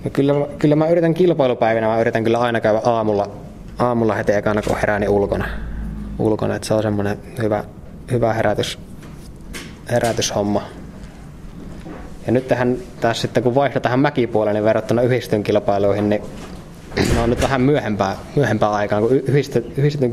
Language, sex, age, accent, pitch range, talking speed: Finnish, male, 20-39, native, 100-120 Hz, 145 wpm